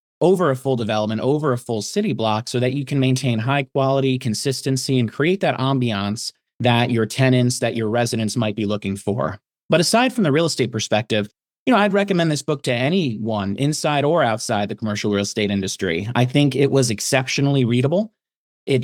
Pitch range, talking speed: 120-140 Hz, 195 wpm